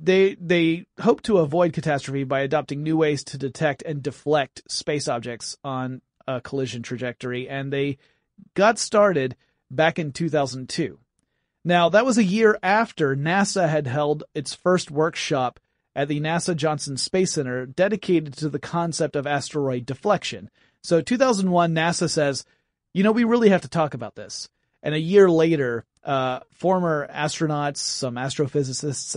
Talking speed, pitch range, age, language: 150 wpm, 135-175 Hz, 30-49, English